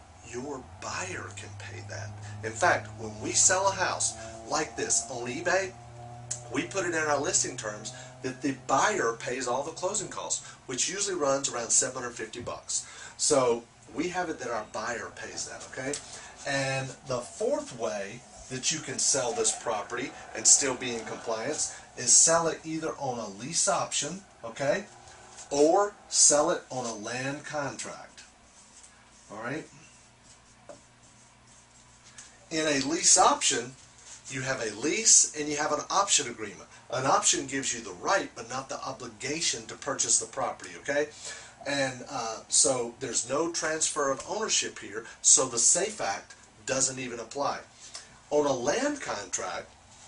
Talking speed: 155 wpm